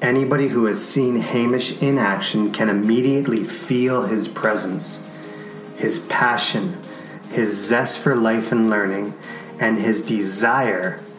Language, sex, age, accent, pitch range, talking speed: English, male, 30-49, American, 110-125 Hz, 125 wpm